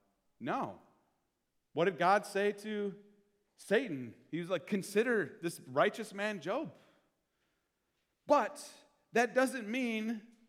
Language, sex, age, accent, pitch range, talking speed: English, male, 40-59, American, 140-220 Hz, 110 wpm